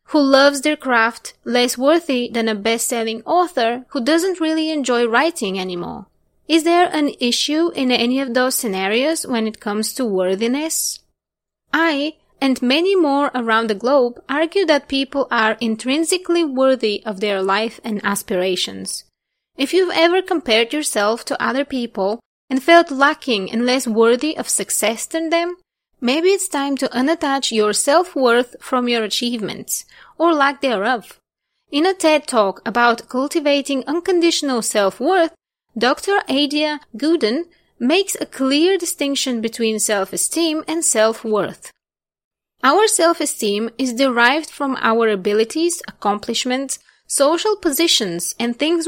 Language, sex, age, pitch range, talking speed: English, female, 20-39, 225-315 Hz, 135 wpm